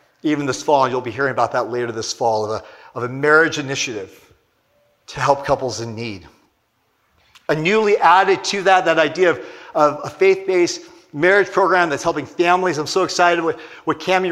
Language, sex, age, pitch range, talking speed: English, male, 40-59, 140-200 Hz, 185 wpm